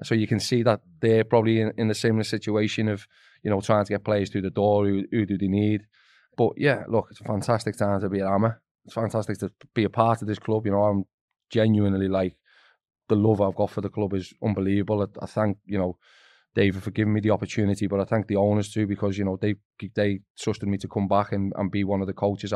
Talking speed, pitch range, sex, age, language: 255 wpm, 100-110 Hz, male, 20-39, English